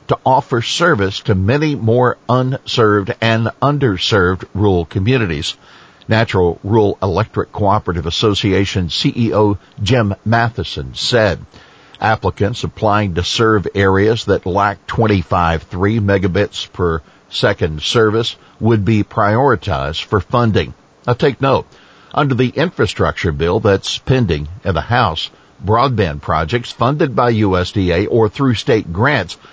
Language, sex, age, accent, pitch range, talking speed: English, male, 60-79, American, 95-120 Hz, 120 wpm